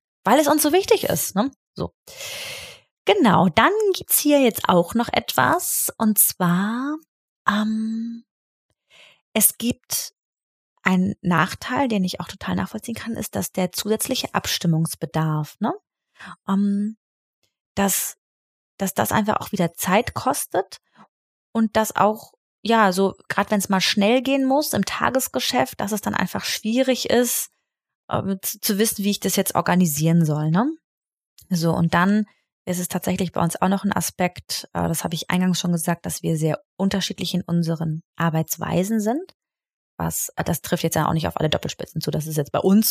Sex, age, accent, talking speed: female, 20-39, German, 160 wpm